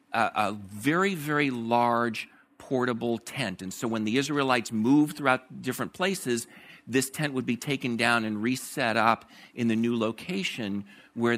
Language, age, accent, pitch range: English, 50-69, American, 120-185 Hz